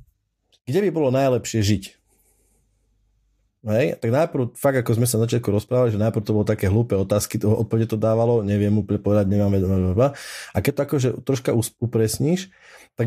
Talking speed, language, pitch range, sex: 170 wpm, Slovak, 100-120 Hz, male